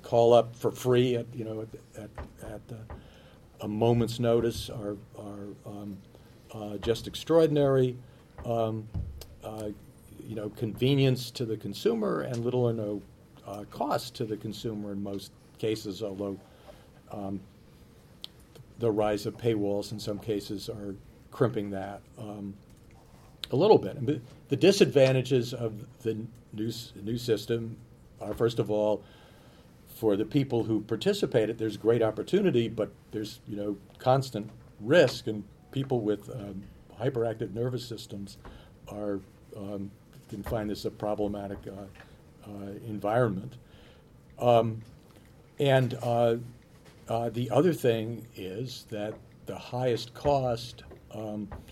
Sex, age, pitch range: male, 50-69, 105-120 Hz